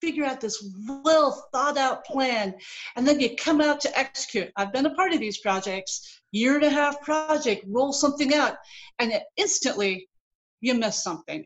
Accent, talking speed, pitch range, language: American, 180 wpm, 230-315 Hz, English